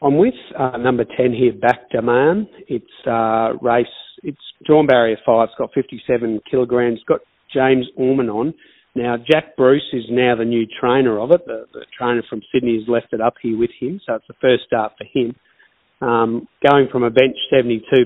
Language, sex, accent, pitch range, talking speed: English, male, Australian, 115-130 Hz, 195 wpm